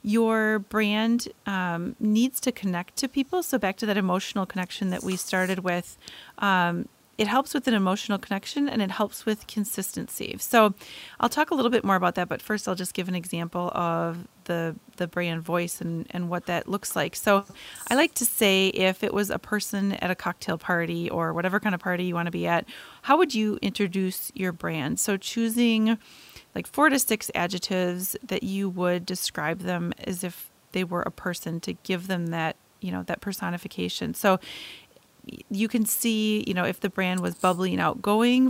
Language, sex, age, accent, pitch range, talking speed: English, female, 30-49, American, 185-220 Hz, 195 wpm